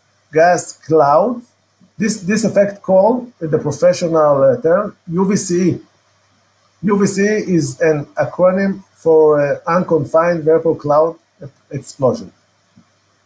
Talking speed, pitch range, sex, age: 95 wpm, 135-180 Hz, male, 50-69